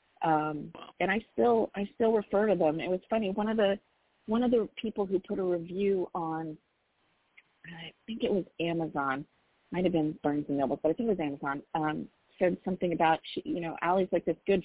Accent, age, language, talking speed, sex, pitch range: American, 40-59, English, 215 wpm, female, 160-200 Hz